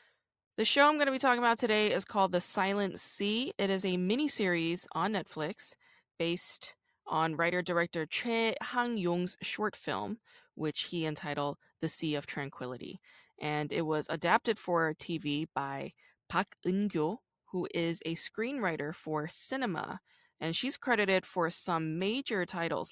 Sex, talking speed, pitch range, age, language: female, 145 wpm, 155-220 Hz, 20-39, English